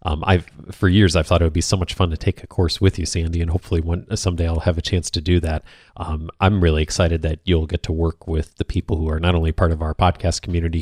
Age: 30-49